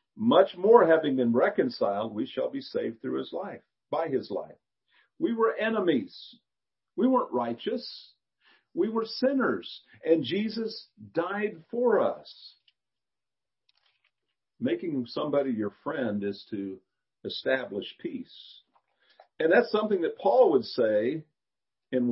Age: 50-69